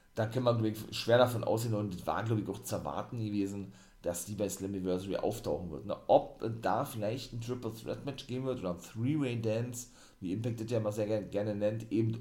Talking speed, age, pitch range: 220 wpm, 40-59, 105-130 Hz